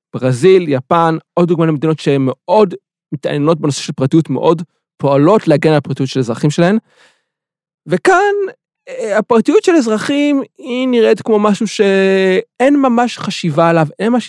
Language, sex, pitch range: Hebrew, male, 160-225 Hz